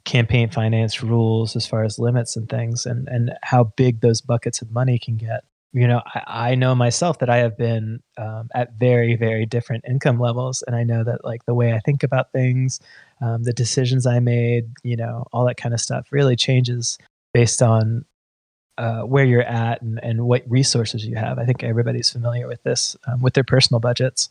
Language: English